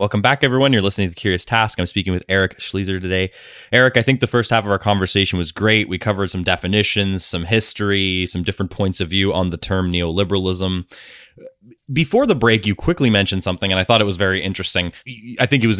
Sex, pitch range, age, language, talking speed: male, 90-105 Hz, 20-39, English, 220 wpm